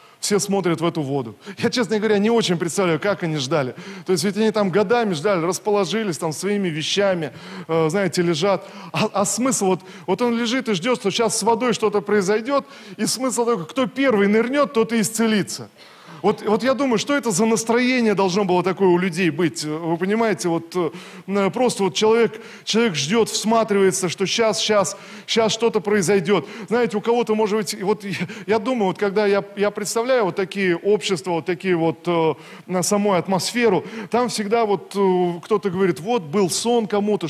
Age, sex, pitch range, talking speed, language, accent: 20-39, male, 180-220 Hz, 180 wpm, Russian, native